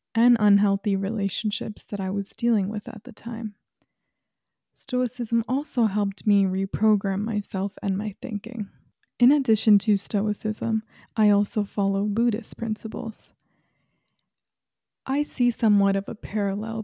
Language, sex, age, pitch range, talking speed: English, female, 20-39, 200-225 Hz, 125 wpm